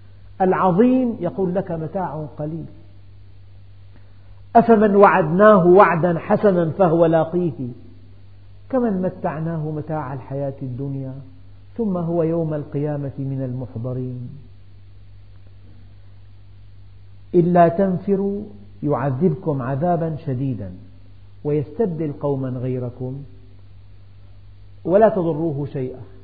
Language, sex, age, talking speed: Arabic, male, 50-69, 75 wpm